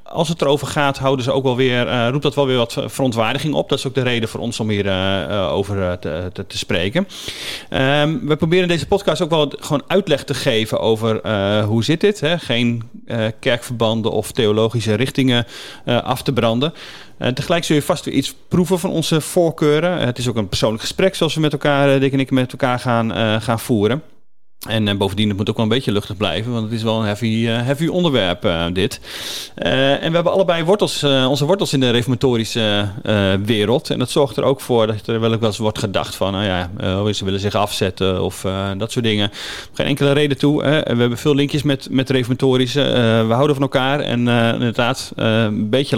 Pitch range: 110-145 Hz